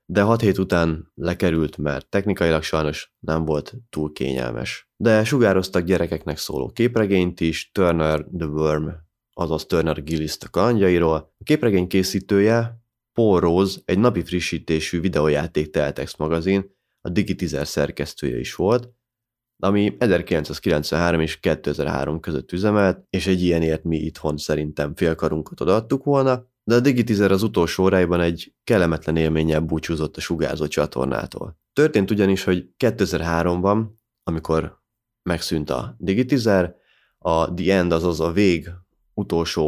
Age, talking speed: 30-49, 125 wpm